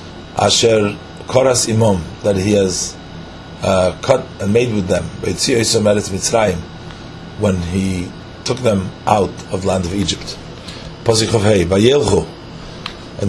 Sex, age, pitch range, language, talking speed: male, 40-59, 100-125 Hz, English, 105 wpm